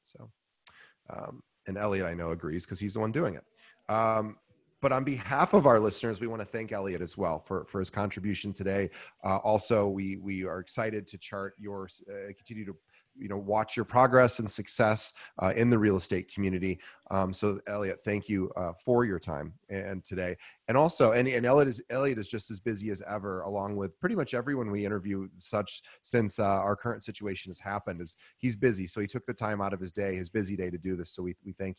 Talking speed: 225 wpm